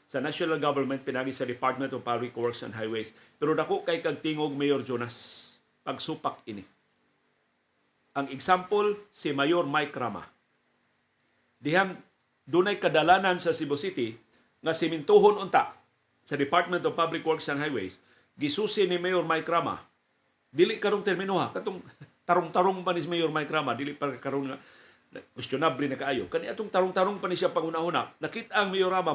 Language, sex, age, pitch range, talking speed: Filipino, male, 50-69, 140-185 Hz, 150 wpm